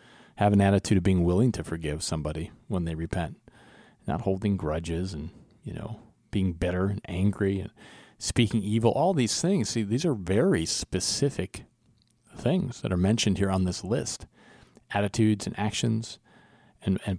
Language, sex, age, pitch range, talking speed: English, male, 40-59, 95-115 Hz, 160 wpm